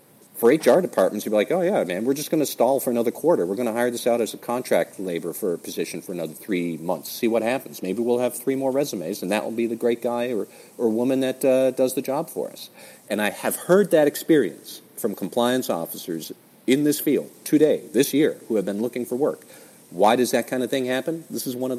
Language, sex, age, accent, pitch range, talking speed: English, male, 40-59, American, 100-130 Hz, 255 wpm